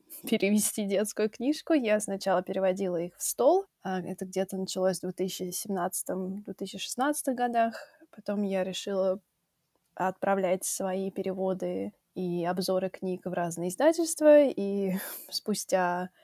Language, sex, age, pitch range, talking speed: Russian, female, 20-39, 180-220 Hz, 105 wpm